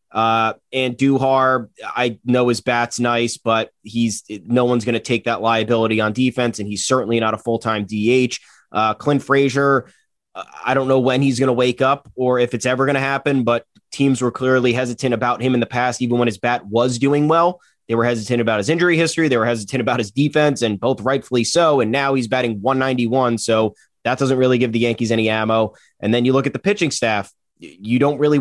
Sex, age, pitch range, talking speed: male, 20-39, 110-130 Hz, 220 wpm